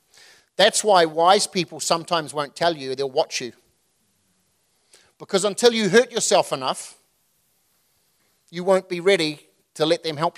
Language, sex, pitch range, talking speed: English, male, 150-200 Hz, 145 wpm